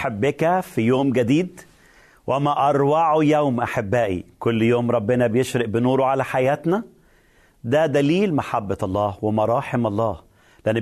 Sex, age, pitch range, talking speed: male, 40-59, 125-170 Hz, 120 wpm